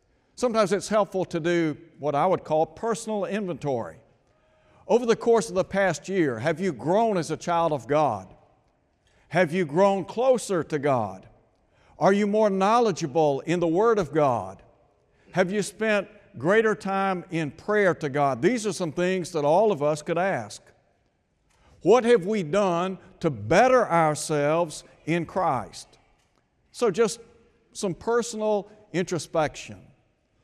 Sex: male